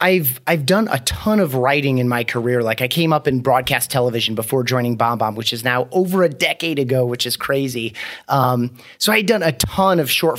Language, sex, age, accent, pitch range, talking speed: English, male, 30-49, American, 125-165 Hz, 230 wpm